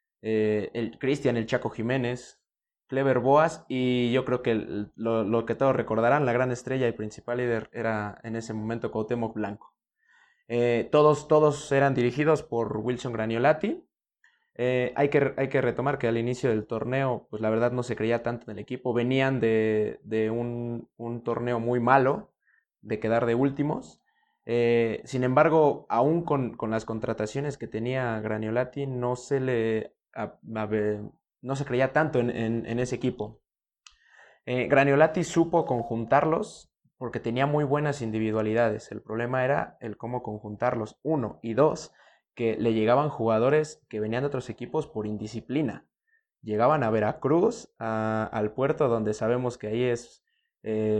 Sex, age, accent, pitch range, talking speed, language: male, 20-39, Mexican, 110-135 Hz, 155 wpm, Spanish